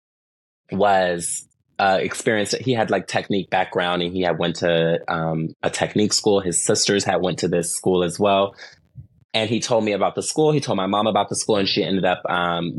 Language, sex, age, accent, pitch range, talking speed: English, male, 20-39, American, 80-95 Hz, 210 wpm